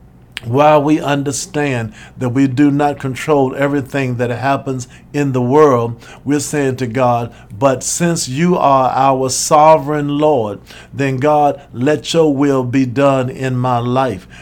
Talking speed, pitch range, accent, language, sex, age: 145 wpm, 125-145 Hz, American, English, male, 50-69